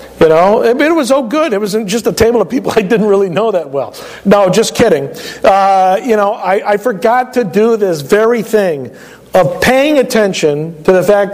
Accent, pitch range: American, 185-235 Hz